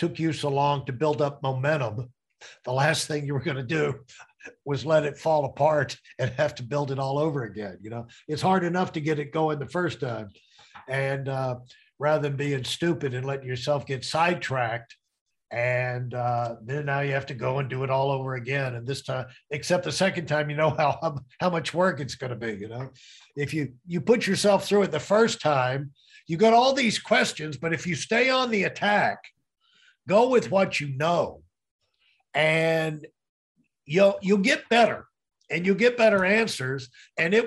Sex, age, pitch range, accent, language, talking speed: male, 60-79, 135-190 Hz, American, English, 200 wpm